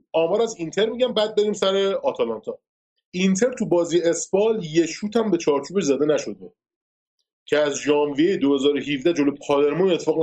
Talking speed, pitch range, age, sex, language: 155 wpm, 150-210 Hz, 30-49, male, Persian